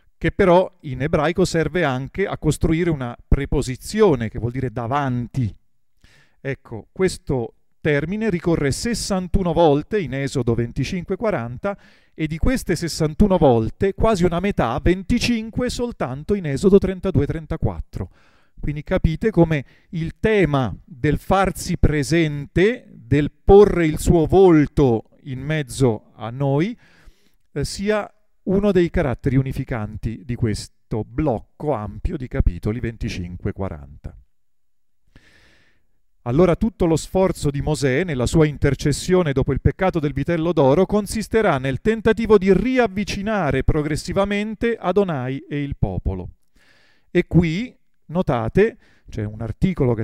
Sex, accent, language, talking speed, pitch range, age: male, native, Italian, 120 wpm, 130-190 Hz, 40-59